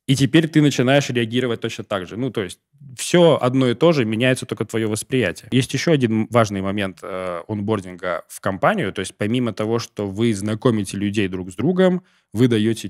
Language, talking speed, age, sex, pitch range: Russian, 195 wpm, 20-39, male, 105-130 Hz